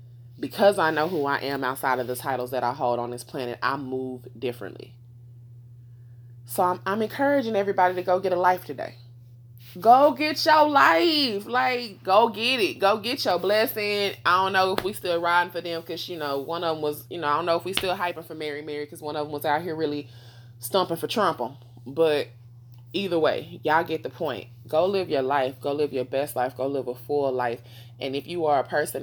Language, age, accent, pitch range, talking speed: English, 20-39, American, 120-165 Hz, 225 wpm